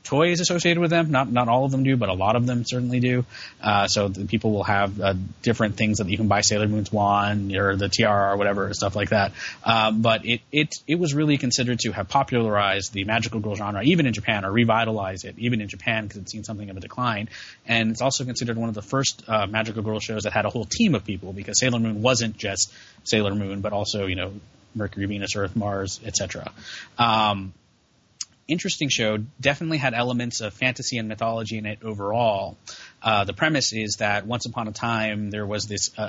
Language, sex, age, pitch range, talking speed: English, male, 20-39, 100-120 Hz, 220 wpm